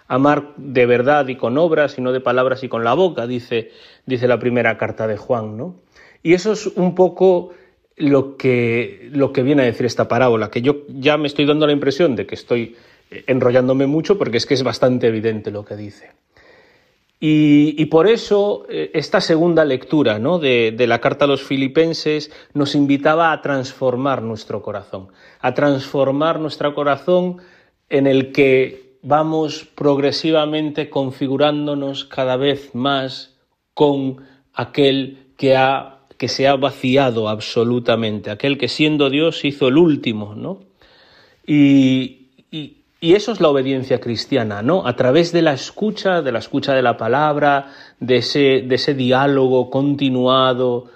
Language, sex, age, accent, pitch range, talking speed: Spanish, male, 30-49, Spanish, 125-150 Hz, 155 wpm